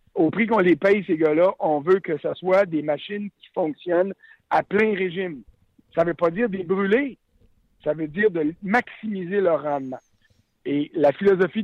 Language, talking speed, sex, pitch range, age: French, 185 wpm, male, 165-200 Hz, 60-79